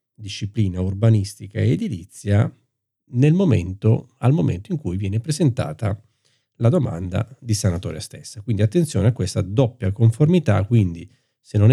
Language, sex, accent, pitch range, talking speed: Italian, male, native, 100-120 Hz, 135 wpm